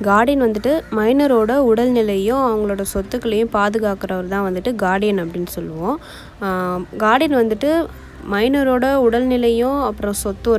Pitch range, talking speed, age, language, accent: 195-245 Hz, 100 wpm, 20-39, Tamil, native